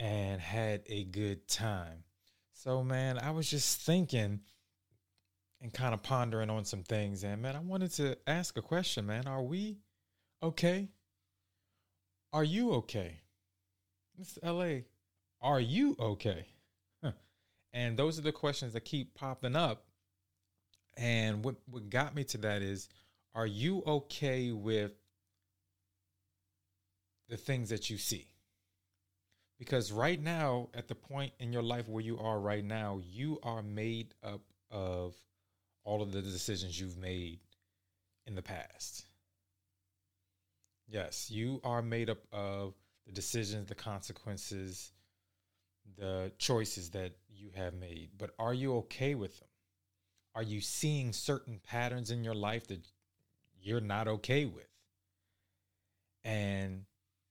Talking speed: 135 wpm